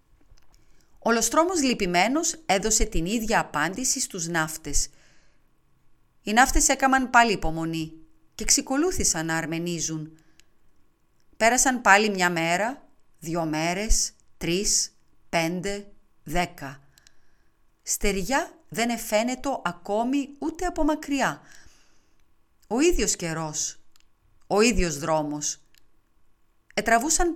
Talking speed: 90 wpm